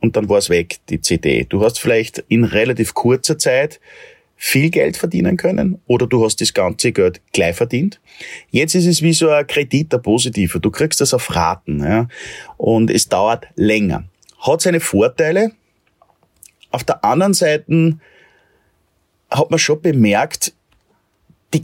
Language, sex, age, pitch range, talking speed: German, male, 30-49, 105-155 Hz, 160 wpm